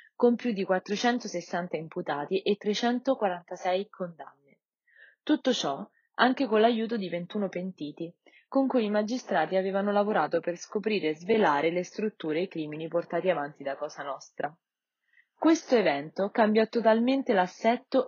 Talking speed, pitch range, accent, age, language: 135 wpm, 165-220 Hz, native, 20-39, Italian